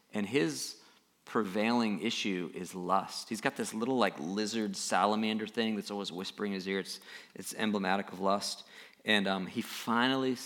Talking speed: 165 wpm